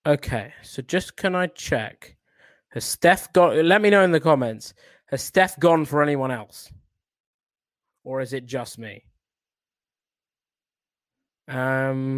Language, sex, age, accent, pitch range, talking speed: English, male, 20-39, British, 135-170 Hz, 135 wpm